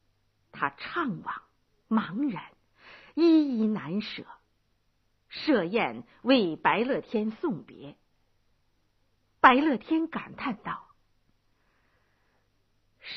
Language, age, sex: Chinese, 50-69, female